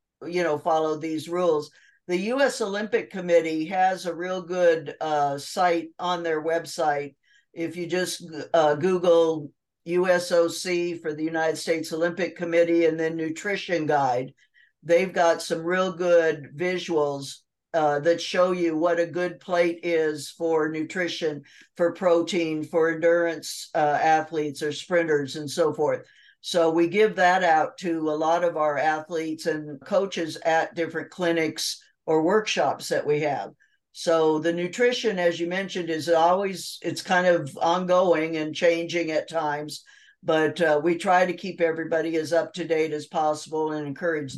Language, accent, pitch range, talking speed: English, American, 160-180 Hz, 155 wpm